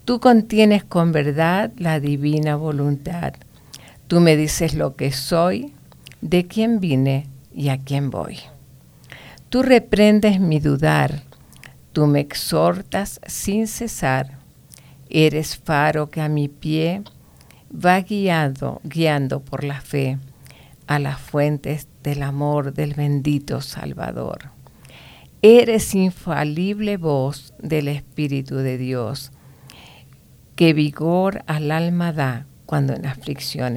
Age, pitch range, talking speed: 50-69, 135-170 Hz, 115 wpm